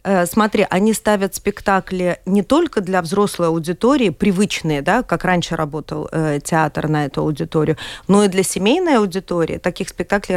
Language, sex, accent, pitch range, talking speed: Russian, female, native, 170-205 Hz, 150 wpm